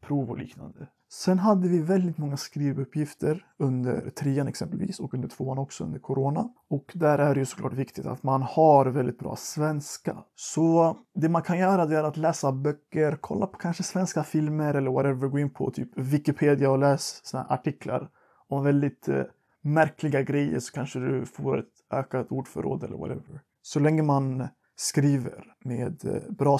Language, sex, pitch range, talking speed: Swedish, male, 135-160 Hz, 175 wpm